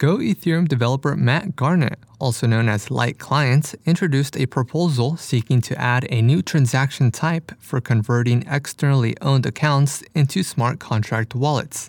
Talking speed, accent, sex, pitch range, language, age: 140 wpm, American, male, 115-145 Hz, English, 20-39